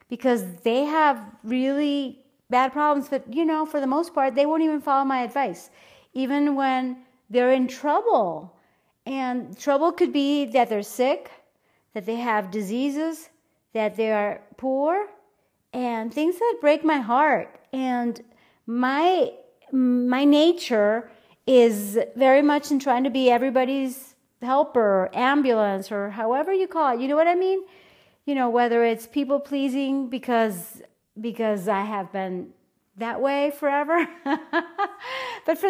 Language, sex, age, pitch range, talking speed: English, female, 40-59, 235-290 Hz, 140 wpm